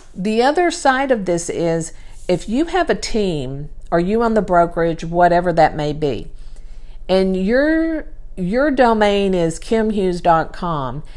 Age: 50-69